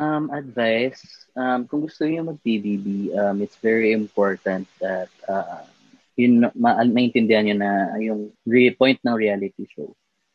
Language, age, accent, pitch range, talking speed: Filipino, 20-39, native, 105-125 Hz, 150 wpm